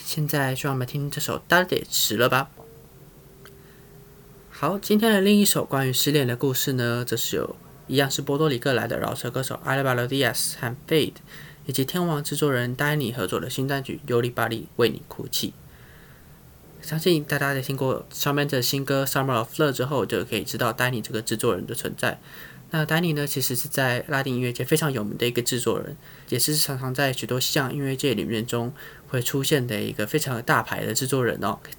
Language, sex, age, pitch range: Chinese, male, 20-39, 125-150 Hz